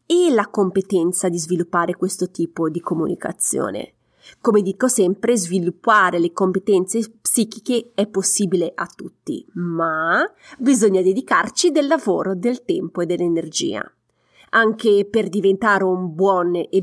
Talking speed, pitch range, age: 125 wpm, 185-255 Hz, 30-49